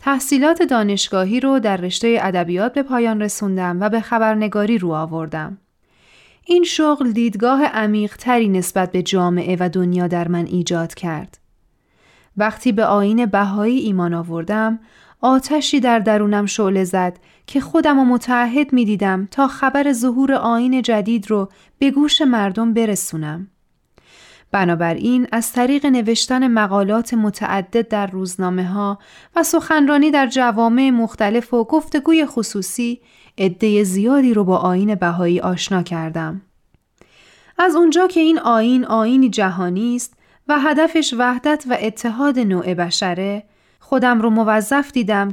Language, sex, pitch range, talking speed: Persian, female, 195-255 Hz, 130 wpm